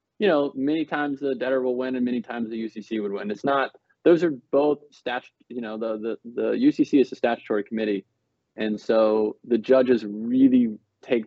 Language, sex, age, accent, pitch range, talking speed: English, male, 20-39, American, 110-130 Hz, 195 wpm